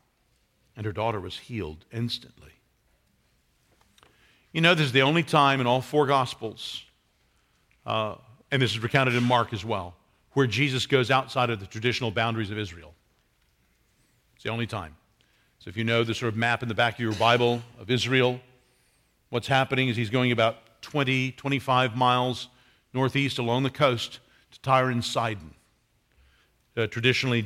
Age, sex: 50-69, male